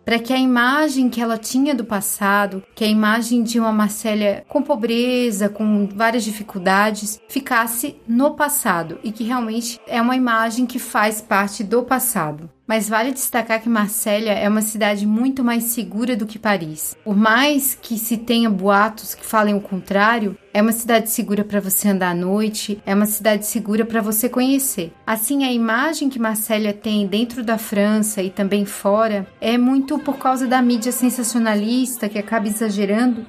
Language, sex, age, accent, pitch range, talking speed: Portuguese, female, 30-49, Brazilian, 210-250 Hz, 175 wpm